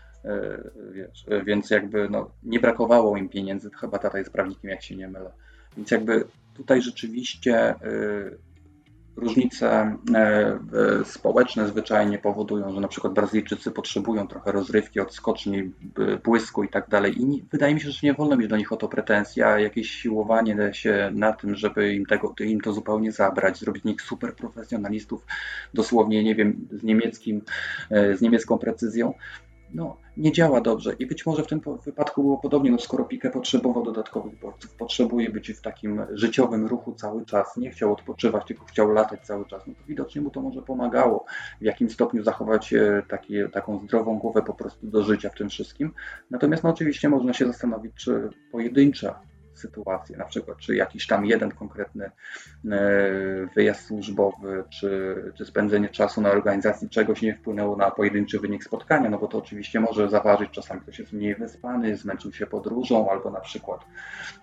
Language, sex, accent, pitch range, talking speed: Polish, male, native, 100-120 Hz, 170 wpm